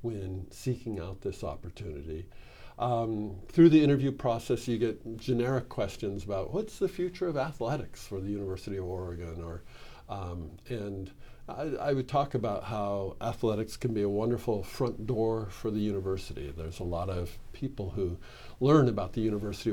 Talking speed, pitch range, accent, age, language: 165 wpm, 95-125 Hz, American, 50-69, English